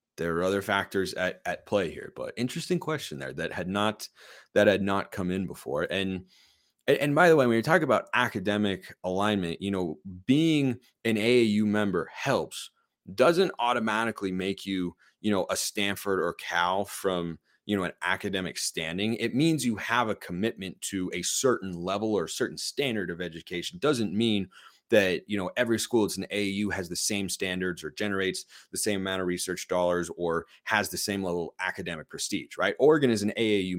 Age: 30-49